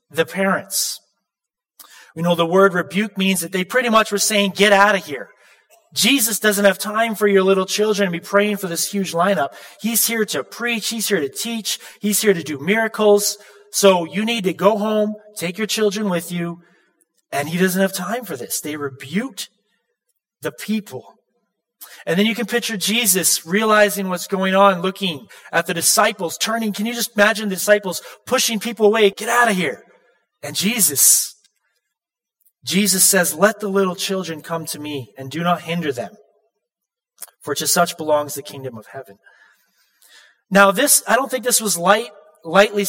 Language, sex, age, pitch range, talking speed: English, male, 30-49, 175-215 Hz, 180 wpm